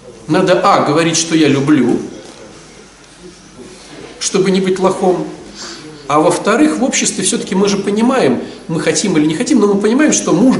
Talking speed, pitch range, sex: 160 wpm, 155-215 Hz, male